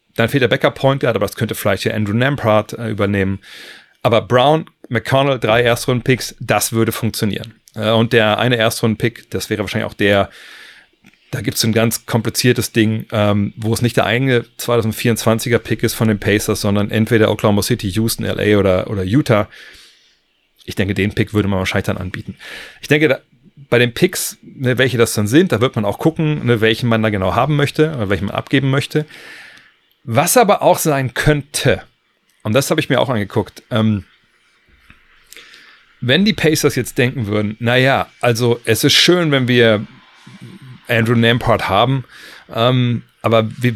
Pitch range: 105-125 Hz